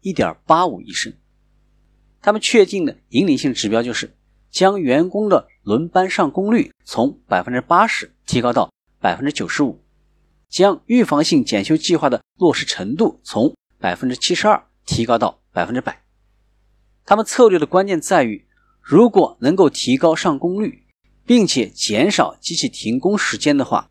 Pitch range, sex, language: 125-210 Hz, male, Chinese